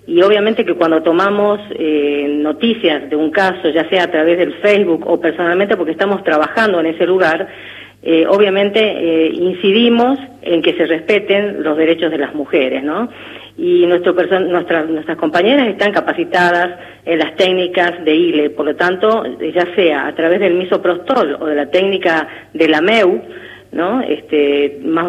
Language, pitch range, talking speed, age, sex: Spanish, 165-205 Hz, 165 wpm, 30-49, female